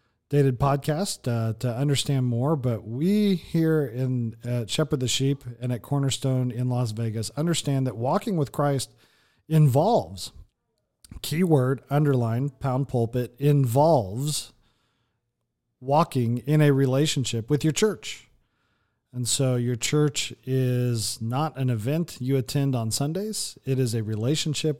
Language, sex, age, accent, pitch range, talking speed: English, male, 40-59, American, 120-150 Hz, 130 wpm